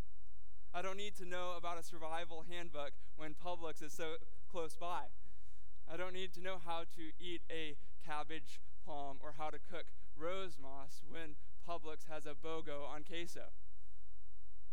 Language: English